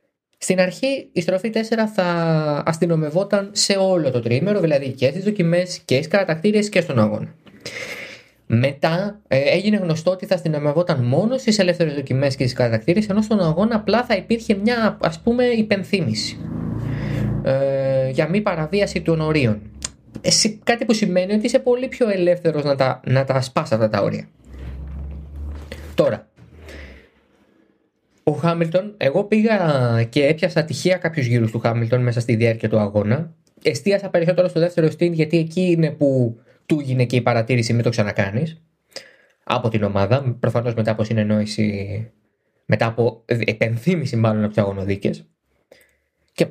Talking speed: 150 wpm